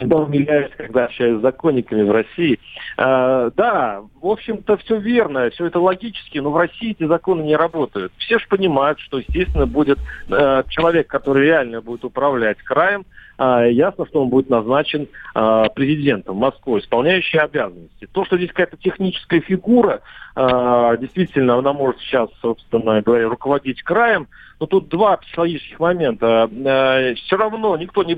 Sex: male